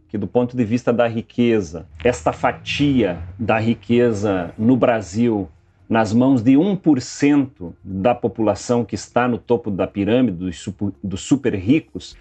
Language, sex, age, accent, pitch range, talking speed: Portuguese, male, 40-59, Brazilian, 100-130 Hz, 140 wpm